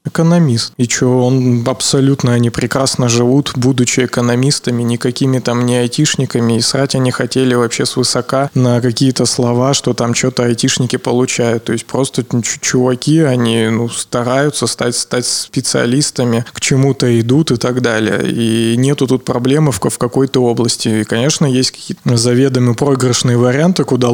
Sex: male